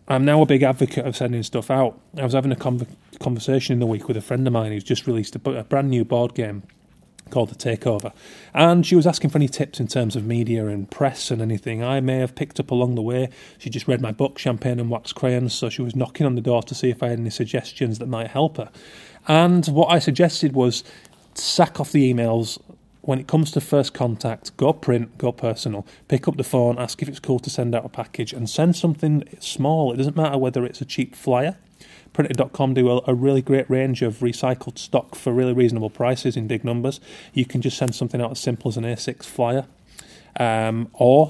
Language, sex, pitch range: English, male, 120-140 Hz